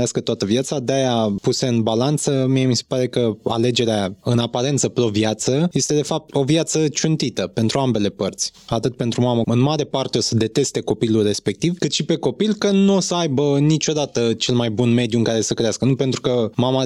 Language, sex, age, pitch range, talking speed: Romanian, male, 20-39, 115-145 Hz, 205 wpm